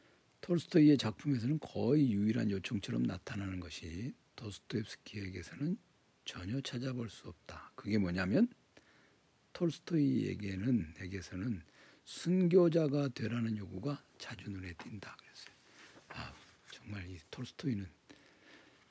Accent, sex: native, male